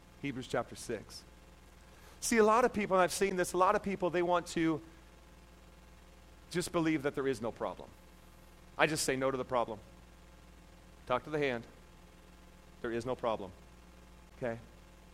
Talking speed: 165 wpm